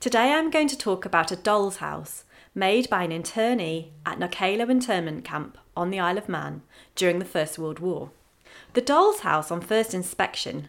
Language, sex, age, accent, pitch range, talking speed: English, female, 30-49, British, 175-235 Hz, 185 wpm